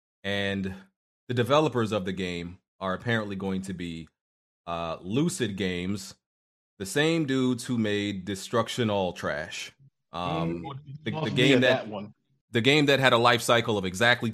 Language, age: English, 30-49